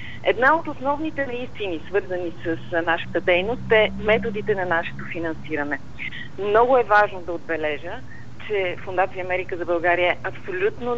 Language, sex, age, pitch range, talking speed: Bulgarian, female, 40-59, 170-255 Hz, 135 wpm